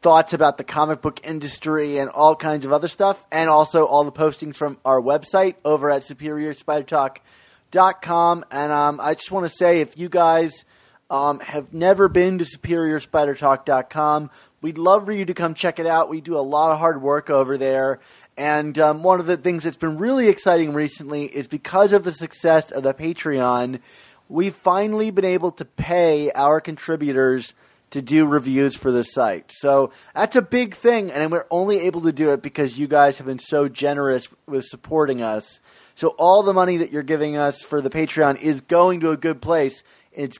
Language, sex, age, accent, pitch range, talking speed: English, male, 30-49, American, 140-170 Hz, 195 wpm